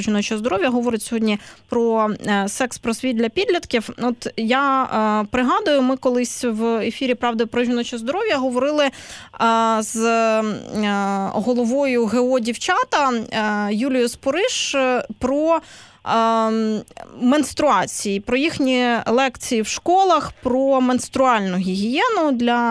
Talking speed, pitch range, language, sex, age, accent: 115 wpm, 210-265 Hz, Ukrainian, female, 20-39, native